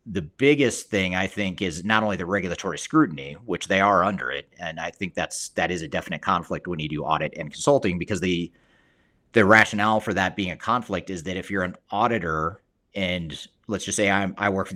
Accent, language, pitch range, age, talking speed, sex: American, English, 90-105 Hz, 30-49, 225 wpm, male